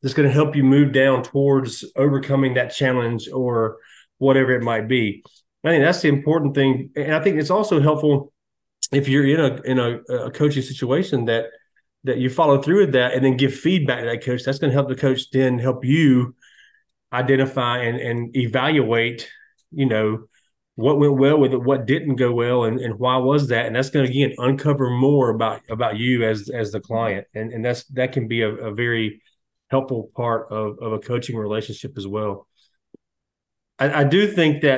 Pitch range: 115-140 Hz